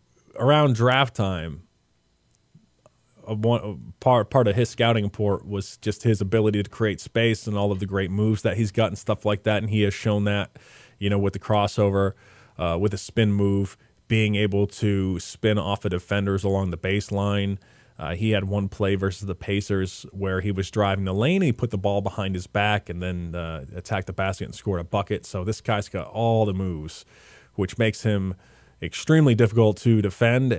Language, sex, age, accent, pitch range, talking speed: English, male, 30-49, American, 95-115 Hz, 200 wpm